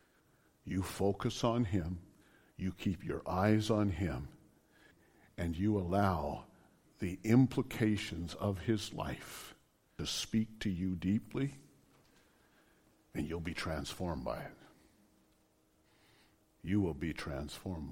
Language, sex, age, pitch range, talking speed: English, male, 60-79, 90-115 Hz, 110 wpm